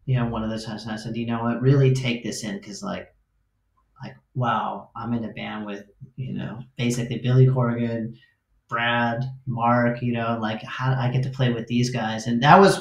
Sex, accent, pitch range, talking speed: male, American, 110-135 Hz, 215 wpm